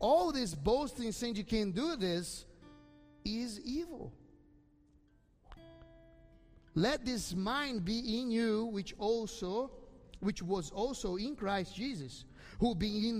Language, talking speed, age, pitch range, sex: English, 125 wpm, 30-49, 165-235 Hz, male